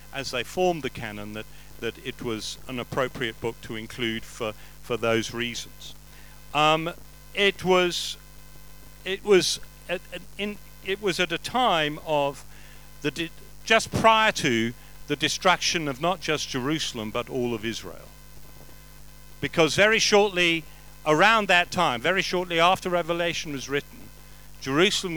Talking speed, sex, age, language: 145 wpm, male, 50-69, English